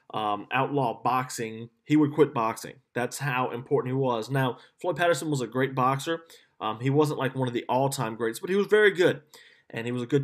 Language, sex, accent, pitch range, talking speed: English, male, American, 120-155 Hz, 225 wpm